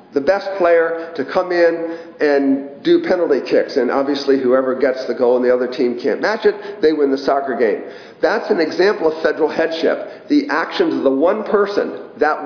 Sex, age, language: male, 40-59, English